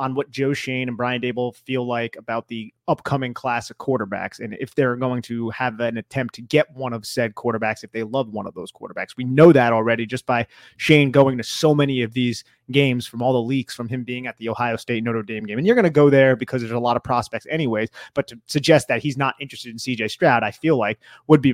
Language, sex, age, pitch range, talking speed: English, male, 30-49, 120-150 Hz, 255 wpm